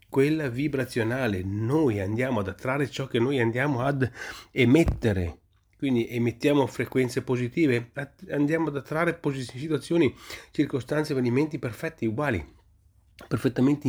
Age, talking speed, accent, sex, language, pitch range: 40-59, 110 wpm, native, male, Italian, 105-135 Hz